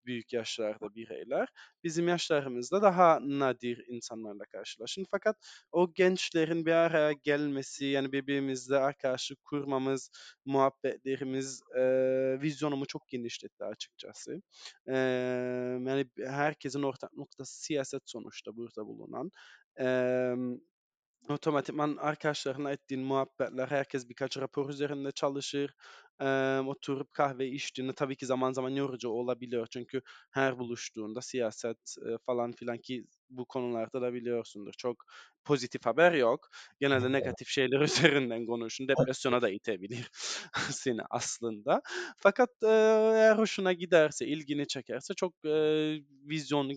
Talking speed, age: 115 wpm, 20-39